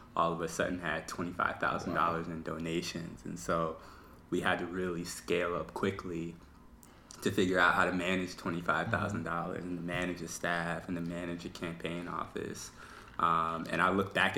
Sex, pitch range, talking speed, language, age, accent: male, 85-95 Hz, 190 wpm, English, 20-39, American